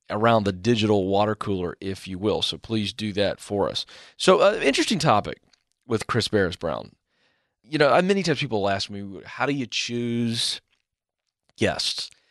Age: 40-59